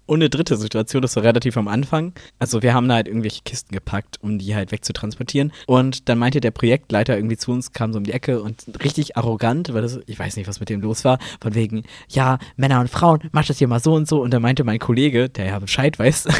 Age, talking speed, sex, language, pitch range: 20-39, 250 wpm, male, German, 110-140 Hz